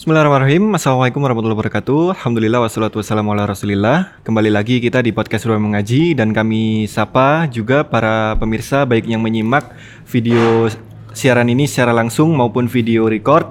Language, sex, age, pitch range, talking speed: Indonesian, male, 20-39, 115-135 Hz, 140 wpm